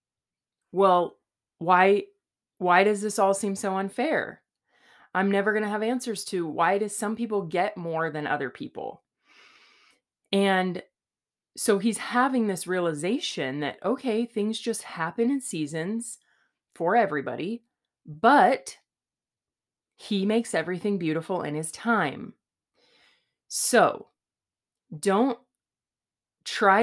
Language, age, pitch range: English, 20-39, 170-225 Hz